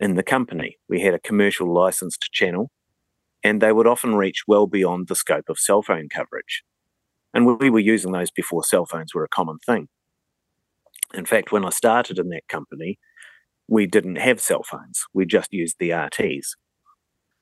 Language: English